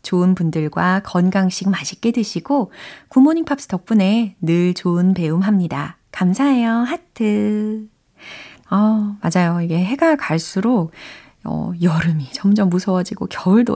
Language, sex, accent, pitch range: Korean, female, native, 170-220 Hz